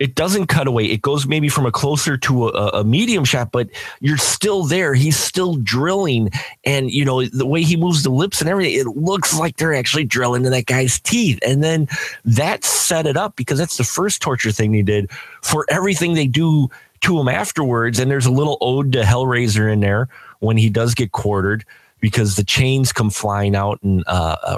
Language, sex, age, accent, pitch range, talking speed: English, male, 30-49, American, 105-140 Hz, 210 wpm